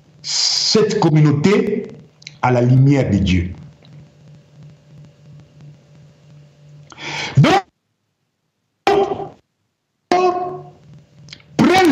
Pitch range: 145-205 Hz